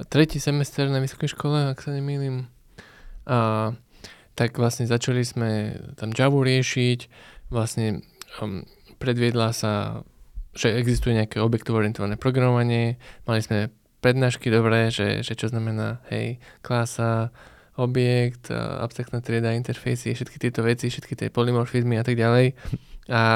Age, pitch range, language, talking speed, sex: 20-39, 115-135 Hz, Slovak, 130 wpm, male